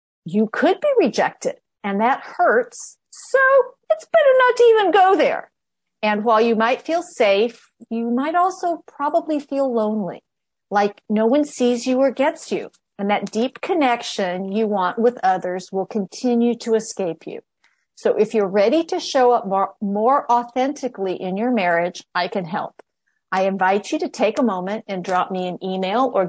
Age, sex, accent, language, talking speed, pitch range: 50-69, female, American, English, 175 wpm, 195-255 Hz